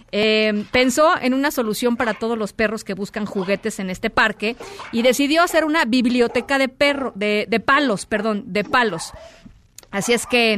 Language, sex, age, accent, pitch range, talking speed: Spanish, female, 40-59, Mexican, 195-245 Hz, 175 wpm